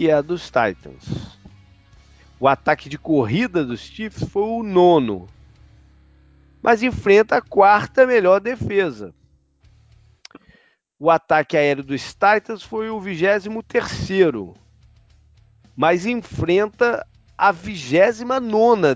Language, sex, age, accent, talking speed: Portuguese, male, 40-59, Brazilian, 110 wpm